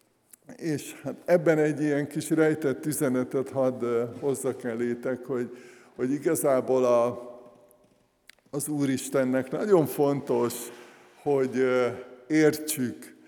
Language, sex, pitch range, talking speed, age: Hungarian, male, 125-145 Hz, 95 wpm, 60-79